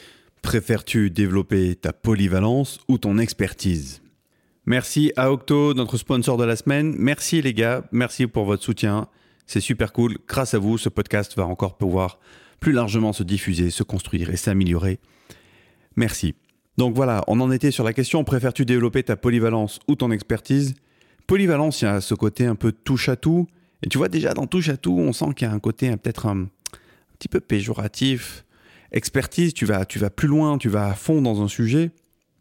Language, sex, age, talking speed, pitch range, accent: French, male, 30-49, 180 wpm, 105-130 Hz, French